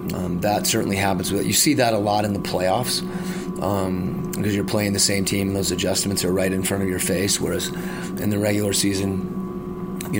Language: English